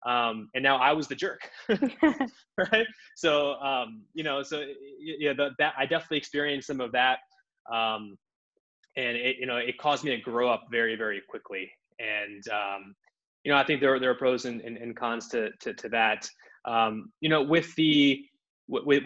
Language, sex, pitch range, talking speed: English, male, 120-150 Hz, 190 wpm